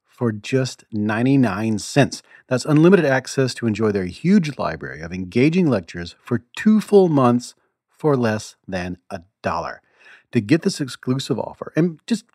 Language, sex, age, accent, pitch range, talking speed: English, male, 40-59, American, 105-150 Hz, 150 wpm